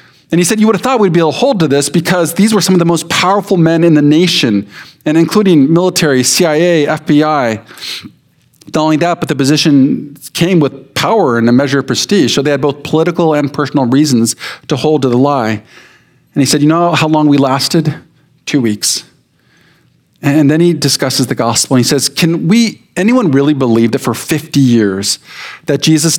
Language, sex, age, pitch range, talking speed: English, male, 40-59, 130-165 Hz, 200 wpm